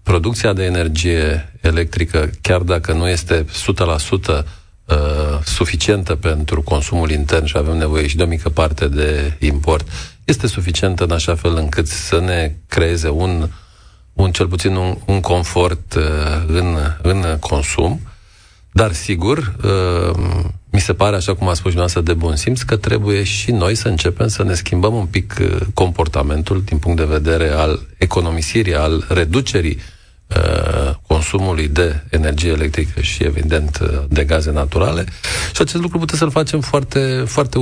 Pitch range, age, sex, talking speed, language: 80-100 Hz, 40-59, male, 145 wpm, Romanian